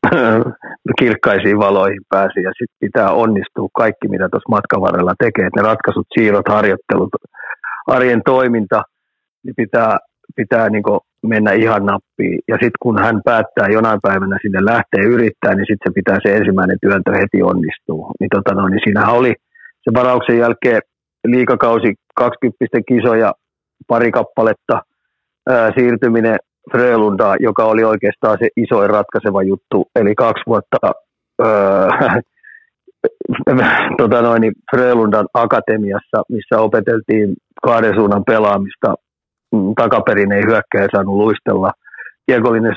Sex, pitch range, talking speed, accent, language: male, 100-120 Hz, 125 wpm, native, Finnish